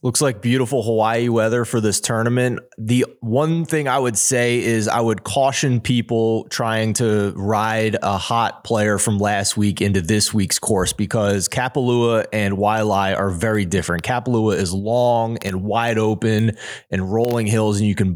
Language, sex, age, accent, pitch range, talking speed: English, male, 20-39, American, 105-125 Hz, 170 wpm